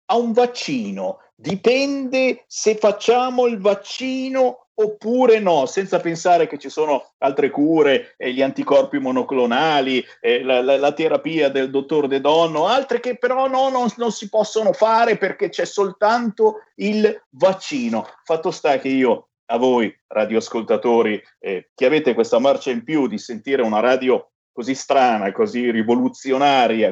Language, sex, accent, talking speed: Italian, male, native, 145 wpm